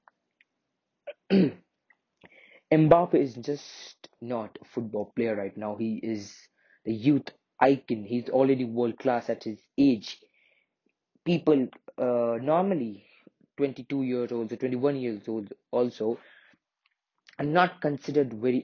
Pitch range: 110-135 Hz